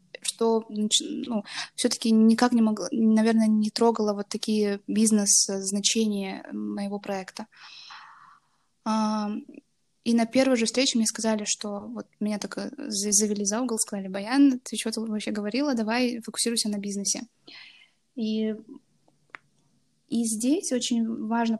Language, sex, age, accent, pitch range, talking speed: Russian, female, 10-29, native, 210-240 Hz, 120 wpm